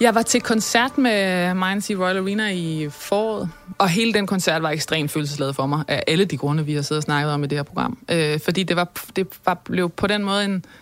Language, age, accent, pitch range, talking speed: Danish, 20-39, native, 180-220 Hz, 250 wpm